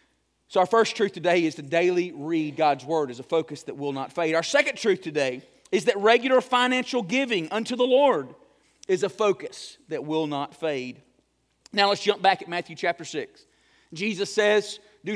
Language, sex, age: English, male, 40-59